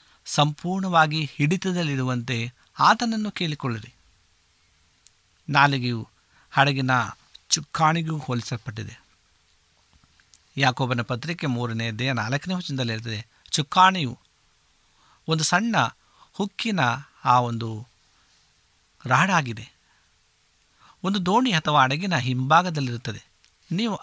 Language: Kannada